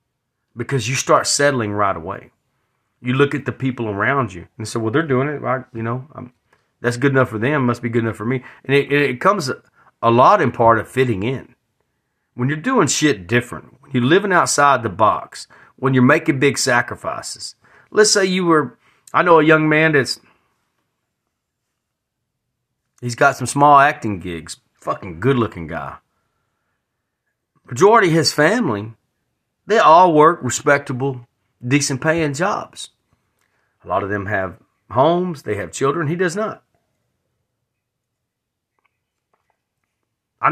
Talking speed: 155 wpm